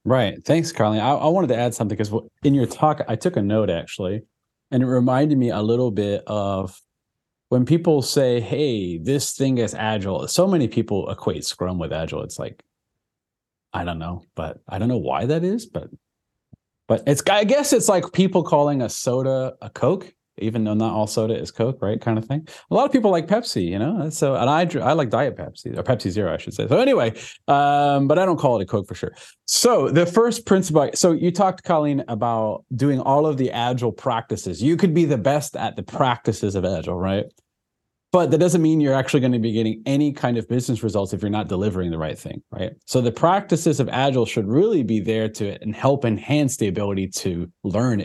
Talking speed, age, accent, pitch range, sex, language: 220 wpm, 30-49, American, 105-150 Hz, male, English